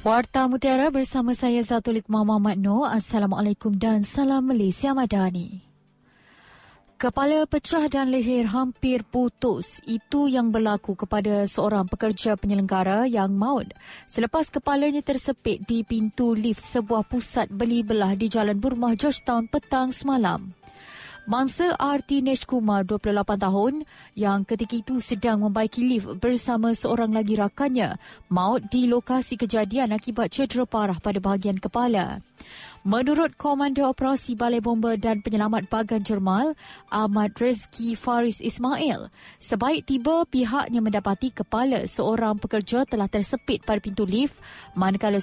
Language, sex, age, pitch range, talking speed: Malay, female, 20-39, 210-255 Hz, 125 wpm